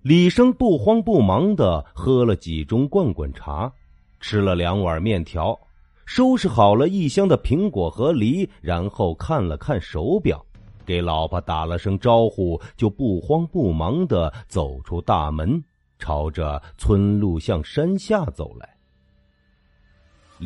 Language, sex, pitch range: Chinese, male, 85-130 Hz